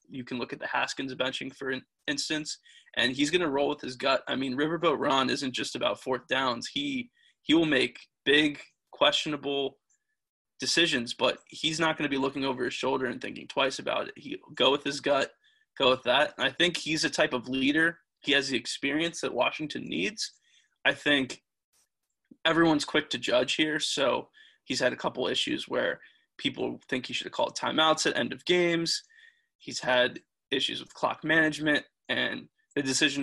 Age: 20-39